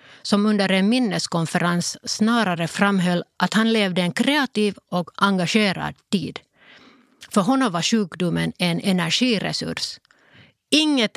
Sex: female